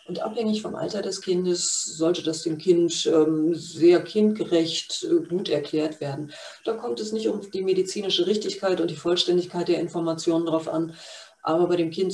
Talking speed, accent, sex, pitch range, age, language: 170 wpm, German, female, 165-205 Hz, 40-59, German